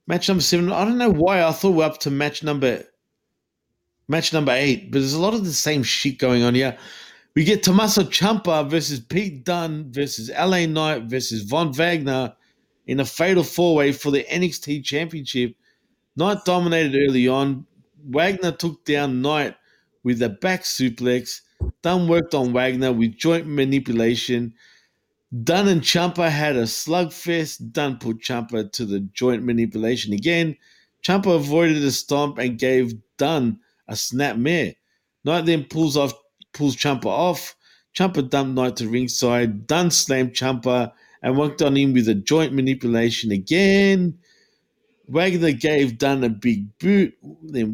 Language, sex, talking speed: English, male, 155 wpm